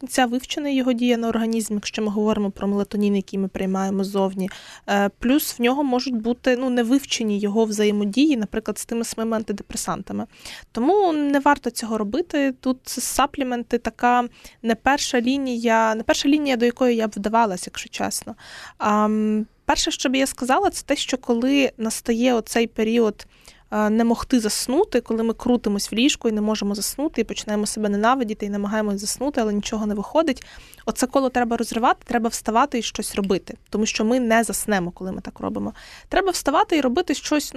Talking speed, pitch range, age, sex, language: 175 wpm, 215-260 Hz, 20-39, female, Ukrainian